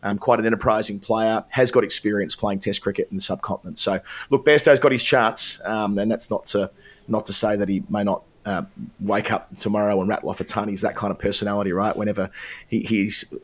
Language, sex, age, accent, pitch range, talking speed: English, male, 30-49, Australian, 95-110 Hz, 215 wpm